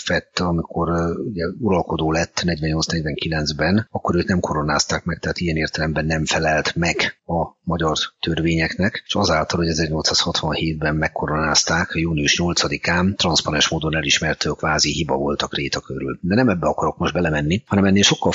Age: 30-49